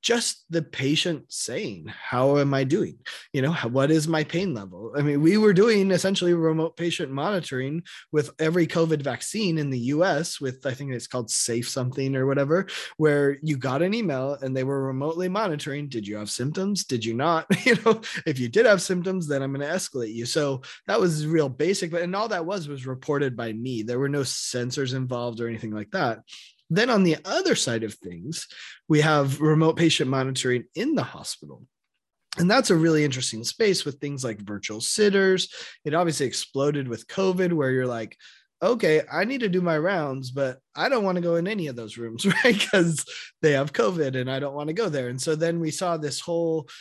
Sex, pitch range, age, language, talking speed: male, 130-170 Hz, 20-39, English, 210 wpm